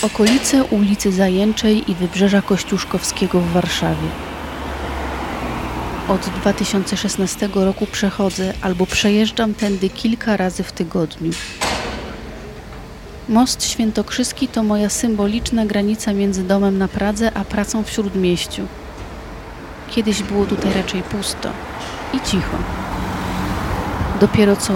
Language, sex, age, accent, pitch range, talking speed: Polish, female, 30-49, native, 170-205 Hz, 100 wpm